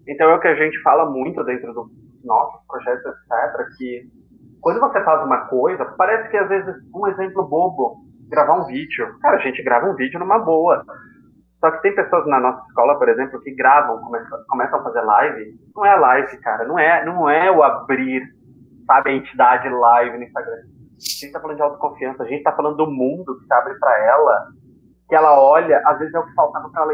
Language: Portuguese